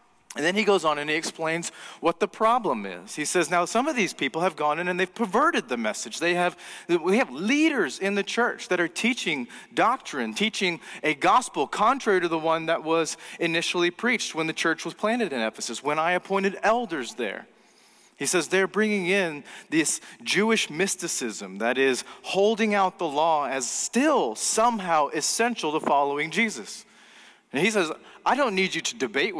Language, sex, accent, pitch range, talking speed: English, male, American, 160-205 Hz, 190 wpm